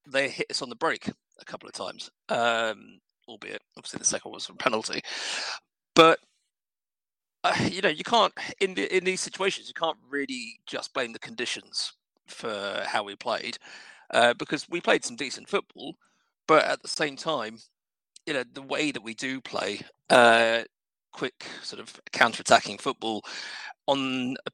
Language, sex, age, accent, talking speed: English, male, 40-59, British, 170 wpm